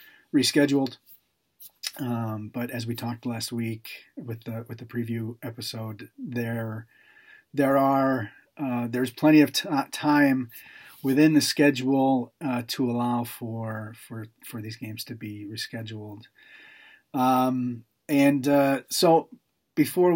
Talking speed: 125 wpm